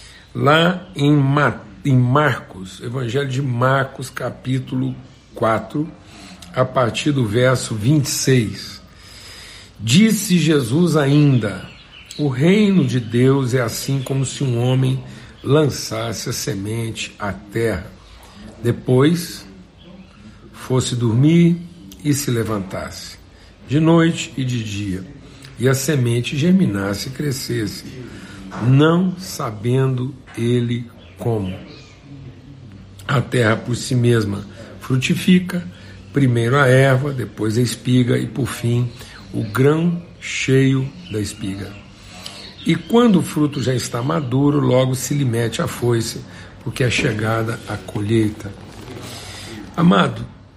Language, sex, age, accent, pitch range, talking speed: Portuguese, male, 60-79, Brazilian, 110-145 Hz, 110 wpm